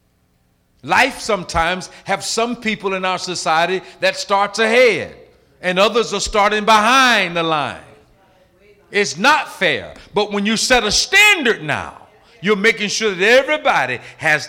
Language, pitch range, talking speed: English, 135-190 Hz, 140 wpm